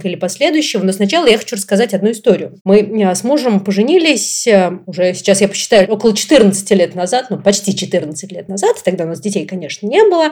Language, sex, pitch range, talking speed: Russian, female, 190-255 Hz, 190 wpm